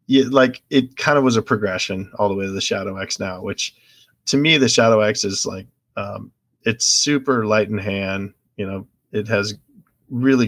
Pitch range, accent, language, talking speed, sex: 100-120 Hz, American, English, 200 wpm, male